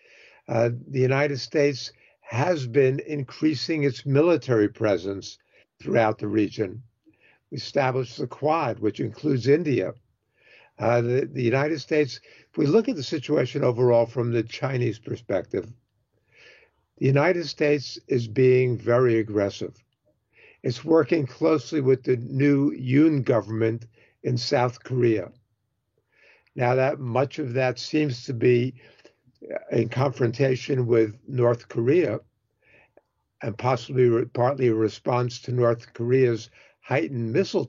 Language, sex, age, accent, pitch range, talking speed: English, male, 60-79, American, 115-140 Hz, 120 wpm